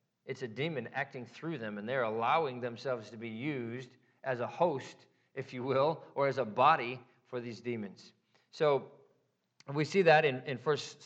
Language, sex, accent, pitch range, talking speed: English, male, American, 125-155 Hz, 180 wpm